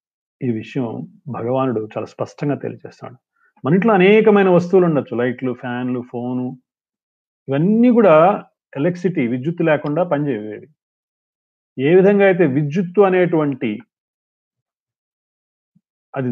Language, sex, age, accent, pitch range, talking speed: Telugu, male, 40-59, native, 120-170 Hz, 95 wpm